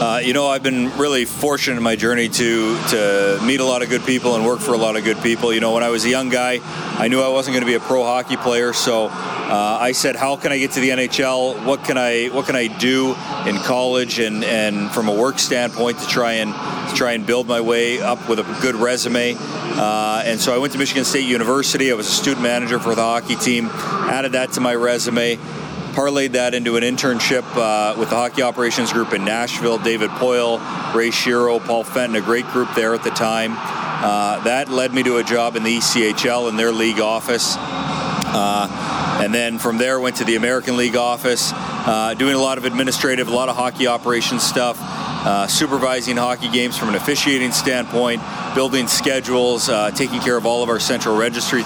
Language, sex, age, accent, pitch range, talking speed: English, male, 40-59, American, 115-130 Hz, 220 wpm